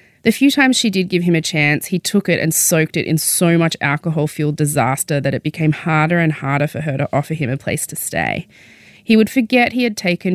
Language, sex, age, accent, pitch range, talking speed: English, female, 20-39, Australian, 150-175 Hz, 240 wpm